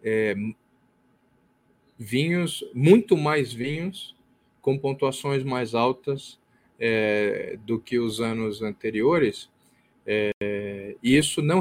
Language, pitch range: Portuguese, 110-135 Hz